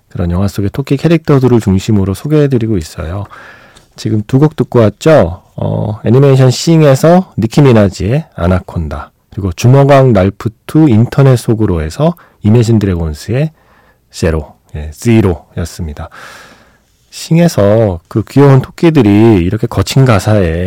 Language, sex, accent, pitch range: Korean, male, native, 100-140 Hz